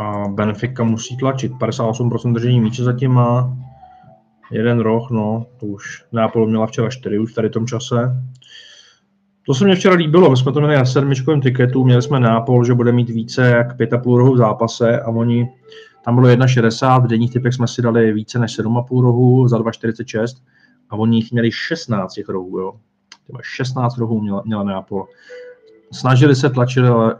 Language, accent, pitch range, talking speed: Czech, native, 105-125 Hz, 170 wpm